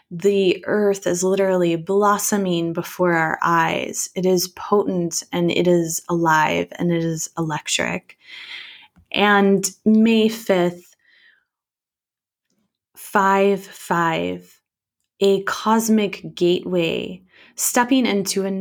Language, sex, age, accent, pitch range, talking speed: English, female, 20-39, American, 175-210 Hz, 95 wpm